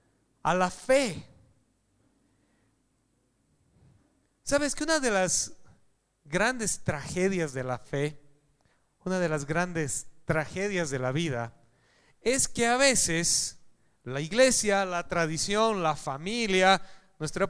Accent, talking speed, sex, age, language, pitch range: Mexican, 110 wpm, male, 40-59, Spanish, 150-250 Hz